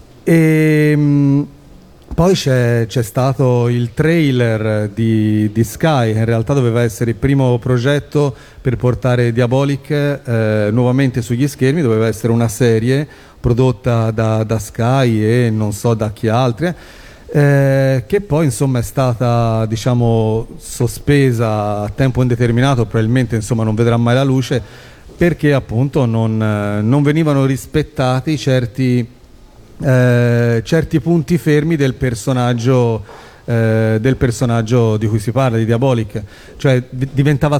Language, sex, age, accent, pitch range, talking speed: Italian, male, 40-59, native, 110-135 Hz, 130 wpm